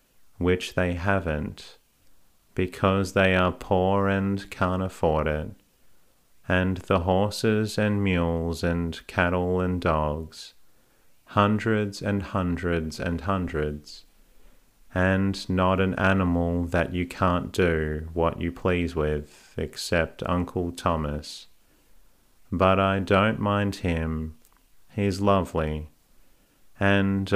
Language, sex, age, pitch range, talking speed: English, male, 40-59, 85-95 Hz, 105 wpm